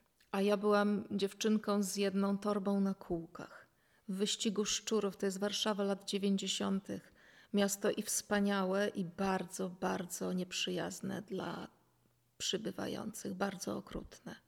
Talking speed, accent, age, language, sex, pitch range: 115 wpm, native, 30-49, Polish, female, 195-215 Hz